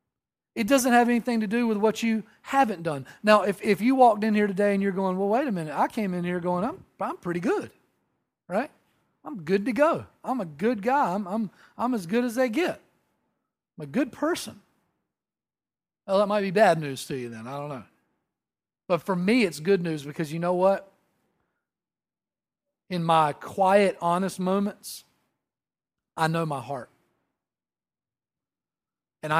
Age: 40-59